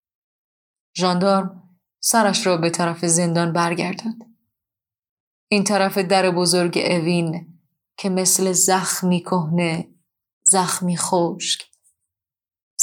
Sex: female